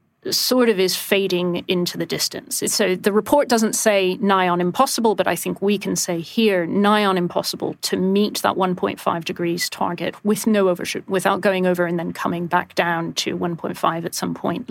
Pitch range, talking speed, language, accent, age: 180-210 Hz, 190 wpm, English, British, 40-59